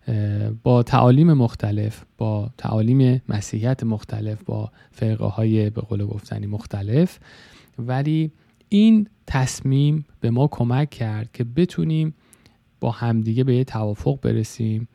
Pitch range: 110-140 Hz